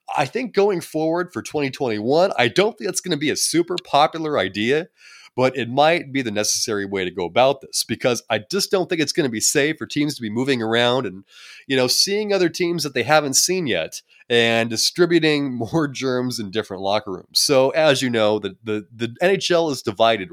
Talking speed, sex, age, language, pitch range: 215 wpm, male, 30-49, English, 110-160 Hz